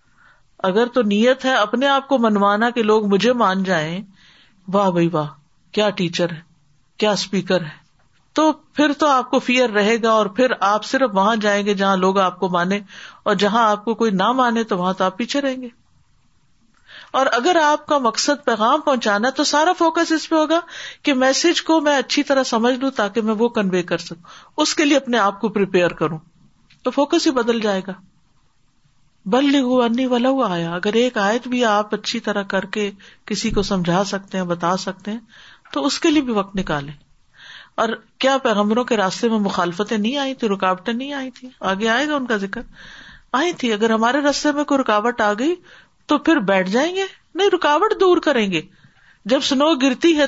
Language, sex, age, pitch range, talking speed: Urdu, female, 50-69, 195-275 Hz, 200 wpm